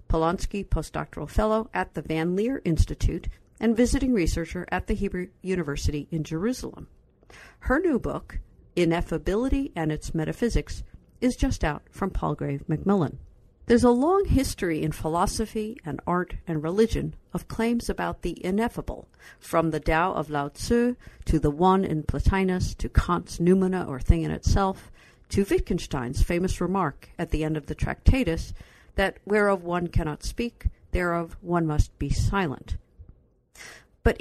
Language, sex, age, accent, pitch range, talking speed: English, female, 50-69, American, 155-220 Hz, 145 wpm